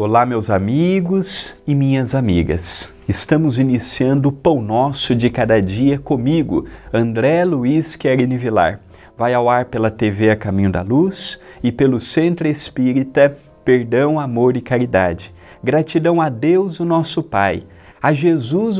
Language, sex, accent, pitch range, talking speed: Portuguese, male, Brazilian, 120-170 Hz, 140 wpm